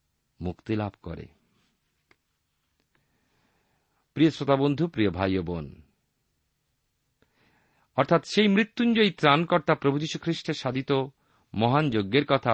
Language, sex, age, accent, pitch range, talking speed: Bengali, male, 50-69, native, 105-160 Hz, 65 wpm